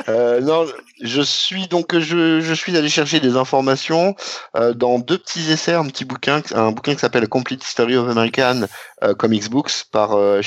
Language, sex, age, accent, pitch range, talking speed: French, male, 50-69, French, 105-140 Hz, 195 wpm